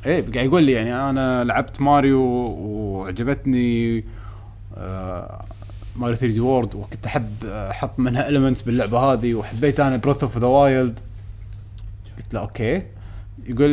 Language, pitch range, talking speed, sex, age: Arabic, 100-140 Hz, 125 wpm, male, 20-39